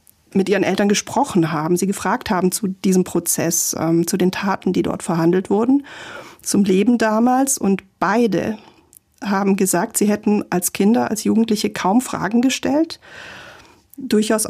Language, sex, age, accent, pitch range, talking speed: German, female, 40-59, German, 185-220 Hz, 150 wpm